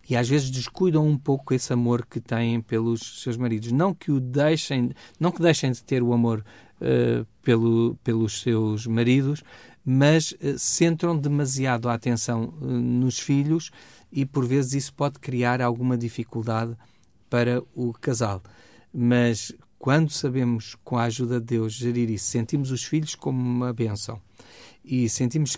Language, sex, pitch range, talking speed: Portuguese, male, 115-135 Hz, 155 wpm